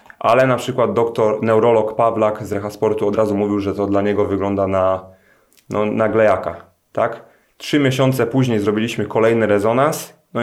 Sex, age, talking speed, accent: male, 30-49, 160 wpm, native